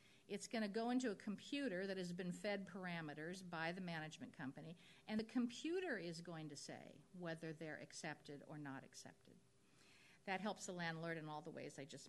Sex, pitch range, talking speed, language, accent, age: female, 170-220 Hz, 190 wpm, English, American, 50-69